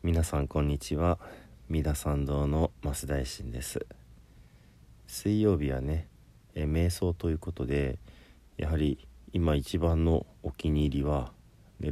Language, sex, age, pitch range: Japanese, male, 40-59, 65-90 Hz